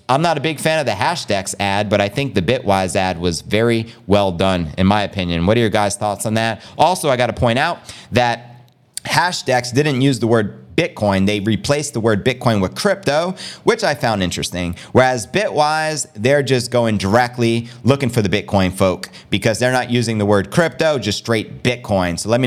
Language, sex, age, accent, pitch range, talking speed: English, male, 30-49, American, 105-145 Hz, 205 wpm